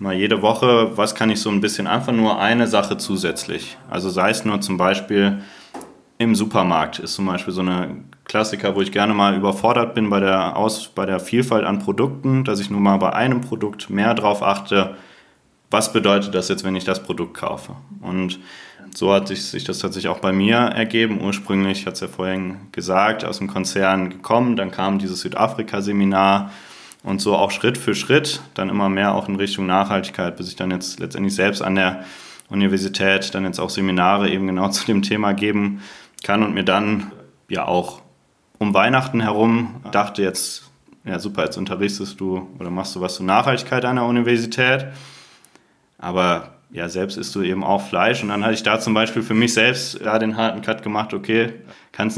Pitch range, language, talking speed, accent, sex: 95-110 Hz, German, 190 wpm, German, male